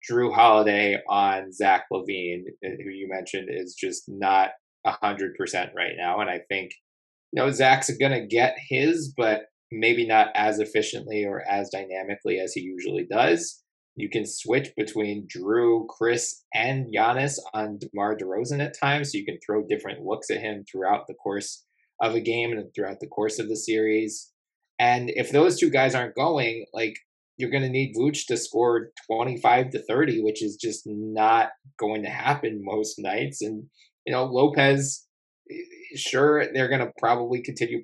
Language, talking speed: English, 170 wpm